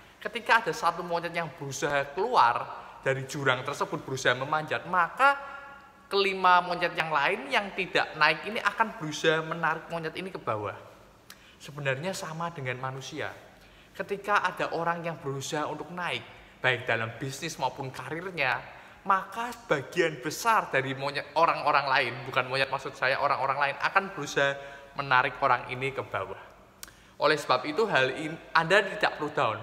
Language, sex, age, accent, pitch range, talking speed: Indonesian, male, 20-39, native, 130-170 Hz, 150 wpm